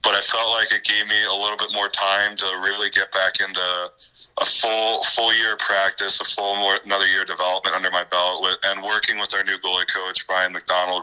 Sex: male